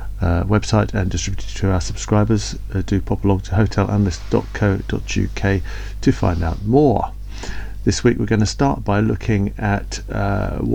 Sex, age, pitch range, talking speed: male, 50-69, 100-125 Hz, 150 wpm